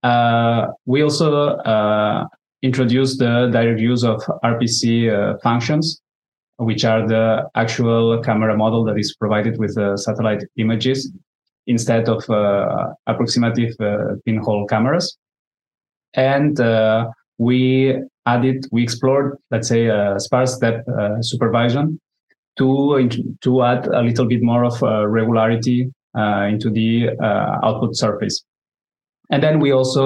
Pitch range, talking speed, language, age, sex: 110-125 Hz, 130 wpm, English, 20-39, male